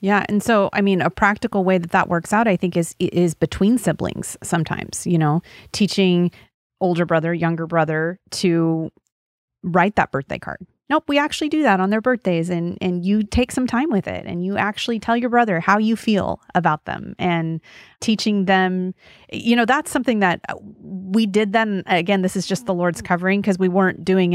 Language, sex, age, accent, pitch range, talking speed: English, female, 30-49, American, 170-205 Hz, 195 wpm